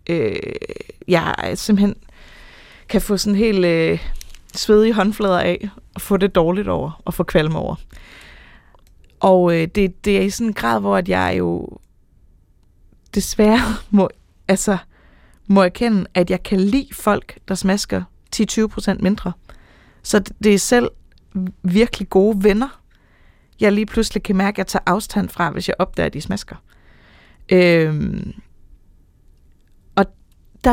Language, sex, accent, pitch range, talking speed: Danish, female, native, 180-220 Hz, 140 wpm